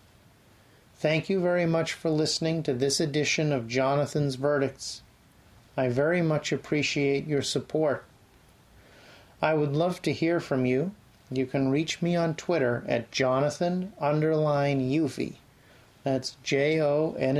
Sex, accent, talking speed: male, American, 125 wpm